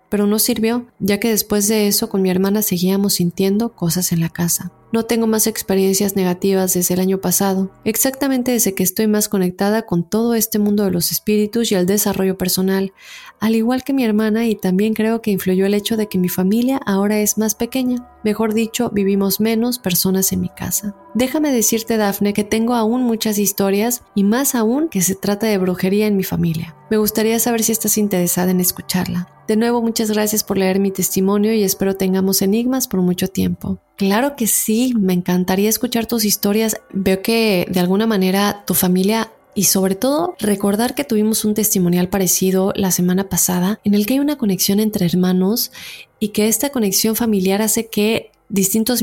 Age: 30-49